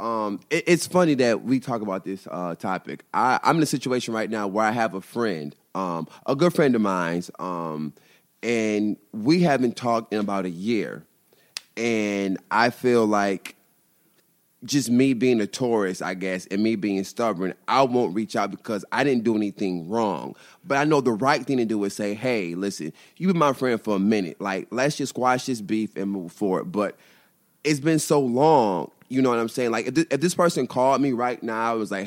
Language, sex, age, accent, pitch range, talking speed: English, male, 30-49, American, 100-130 Hz, 210 wpm